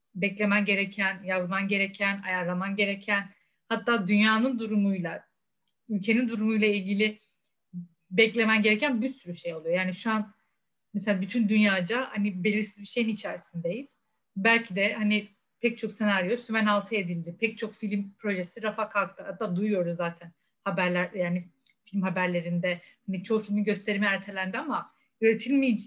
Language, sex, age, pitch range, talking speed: Turkish, female, 30-49, 195-235 Hz, 135 wpm